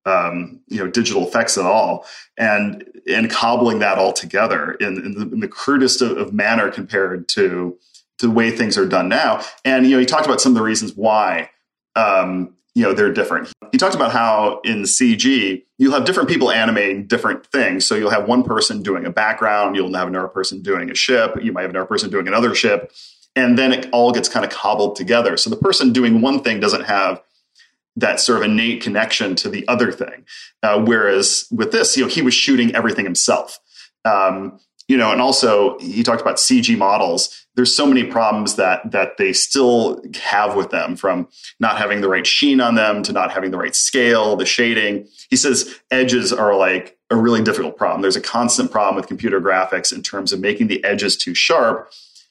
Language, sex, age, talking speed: English, male, 30-49, 210 wpm